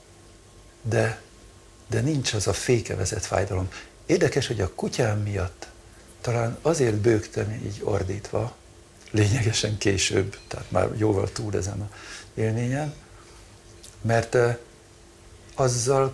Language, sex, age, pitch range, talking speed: Hungarian, male, 60-79, 90-115 Hz, 105 wpm